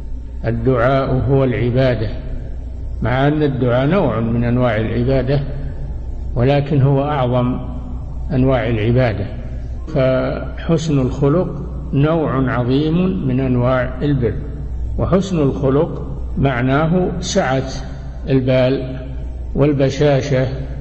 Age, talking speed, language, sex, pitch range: 60-79, 80 wpm, Arabic, male, 115-145 Hz